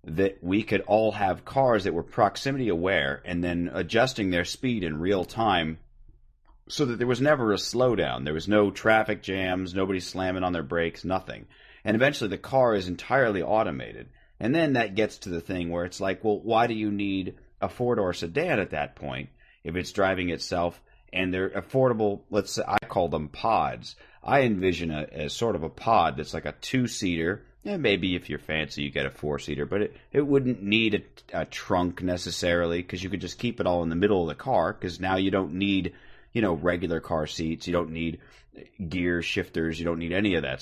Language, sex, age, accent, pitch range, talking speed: English, male, 30-49, American, 85-105 Hz, 205 wpm